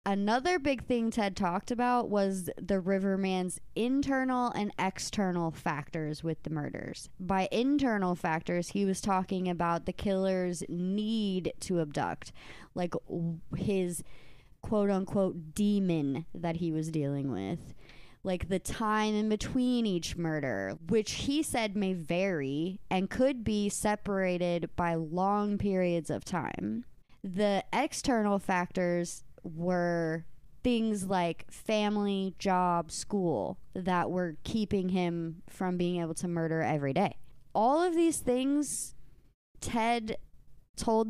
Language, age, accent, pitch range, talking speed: English, 20-39, American, 170-215 Hz, 125 wpm